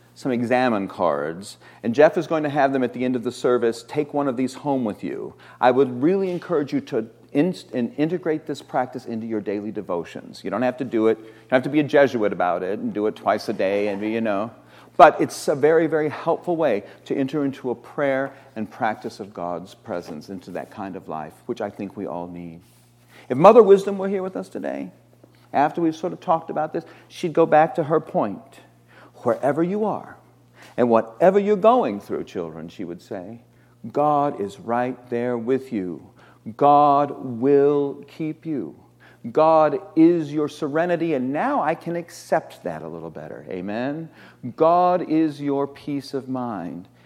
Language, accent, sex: English, American, male